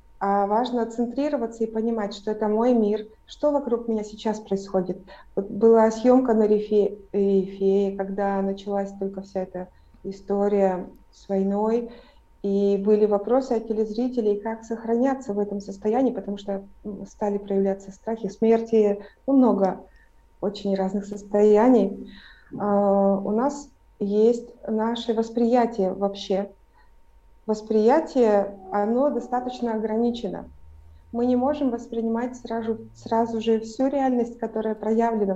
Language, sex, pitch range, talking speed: Russian, female, 200-230 Hz, 115 wpm